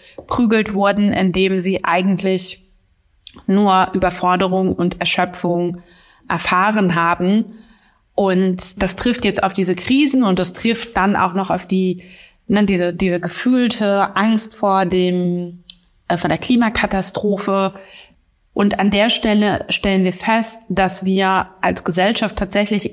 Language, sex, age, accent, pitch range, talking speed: German, female, 30-49, German, 180-210 Hz, 130 wpm